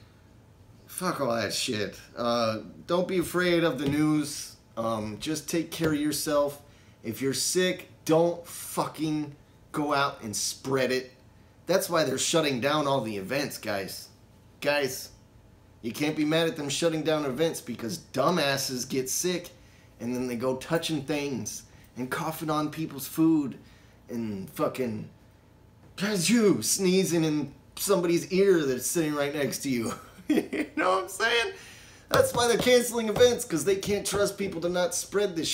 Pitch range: 110-155 Hz